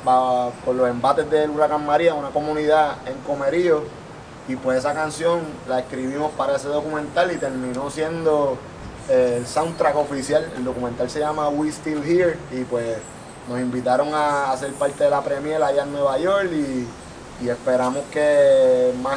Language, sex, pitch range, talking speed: Spanish, male, 130-155 Hz, 160 wpm